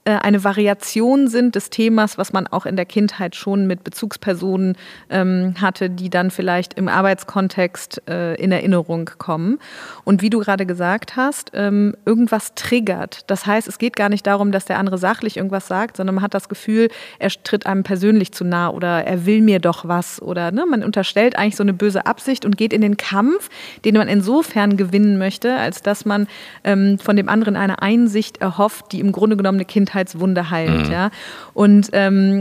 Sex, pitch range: female, 190-225 Hz